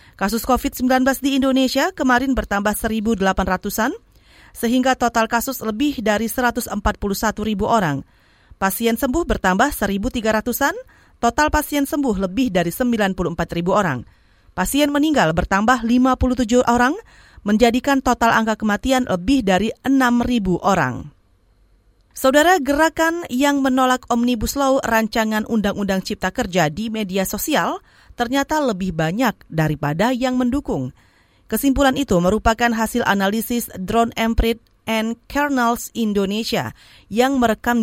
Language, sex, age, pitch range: Indonesian, female, 40-59, 190-255 Hz